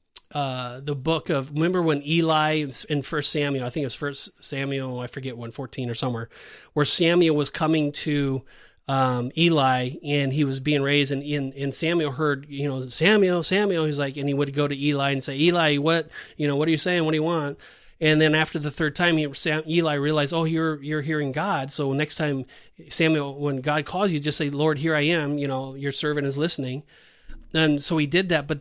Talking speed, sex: 225 wpm, male